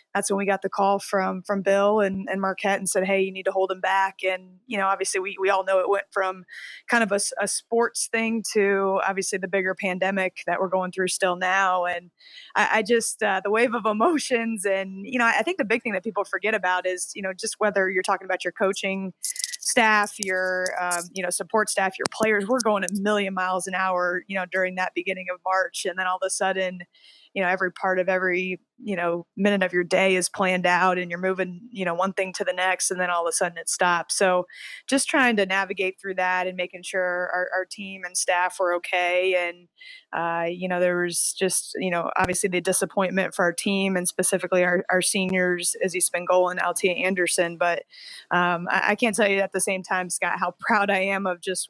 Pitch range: 180-200 Hz